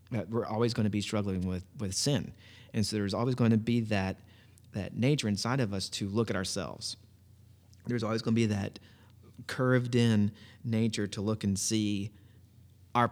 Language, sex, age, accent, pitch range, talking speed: English, male, 30-49, American, 100-120 Hz, 185 wpm